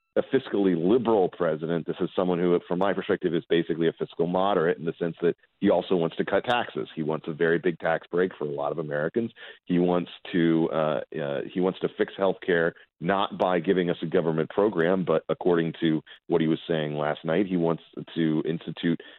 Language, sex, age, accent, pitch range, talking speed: English, male, 40-59, American, 80-95 Hz, 215 wpm